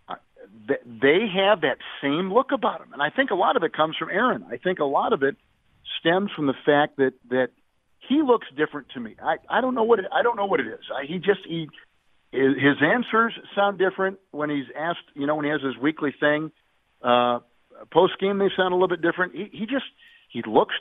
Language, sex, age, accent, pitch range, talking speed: English, male, 50-69, American, 135-170 Hz, 230 wpm